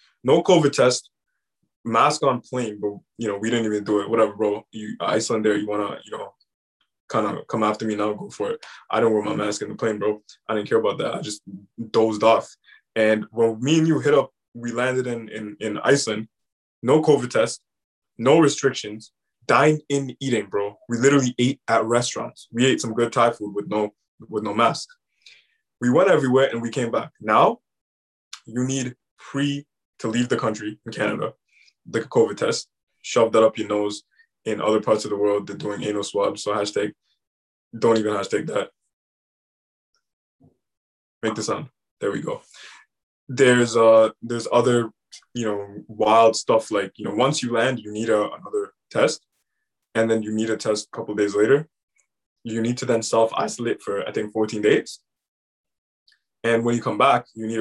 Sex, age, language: male, 20-39, English